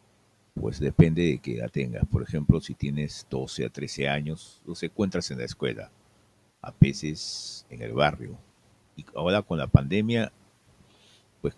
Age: 50-69